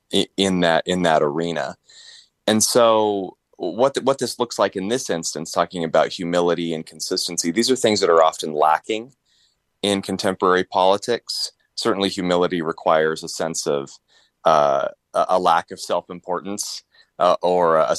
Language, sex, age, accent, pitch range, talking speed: English, male, 30-49, American, 85-105 Hz, 145 wpm